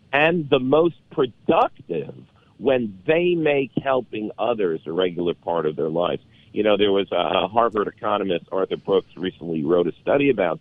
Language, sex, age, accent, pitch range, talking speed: English, male, 50-69, American, 100-140 Hz, 165 wpm